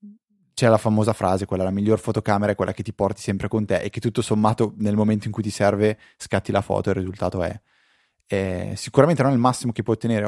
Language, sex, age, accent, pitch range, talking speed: Italian, male, 20-39, native, 100-120 Hz, 245 wpm